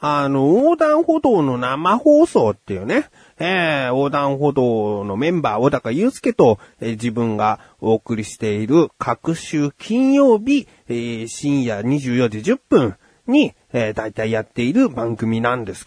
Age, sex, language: 30-49, male, Japanese